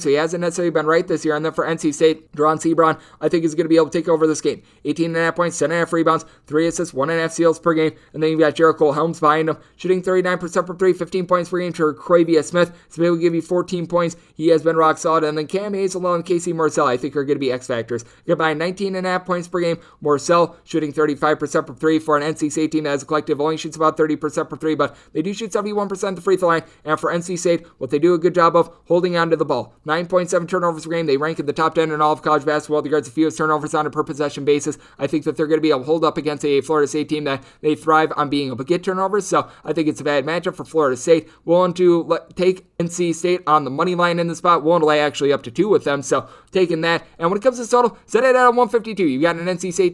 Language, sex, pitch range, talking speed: English, male, 155-175 Hz, 280 wpm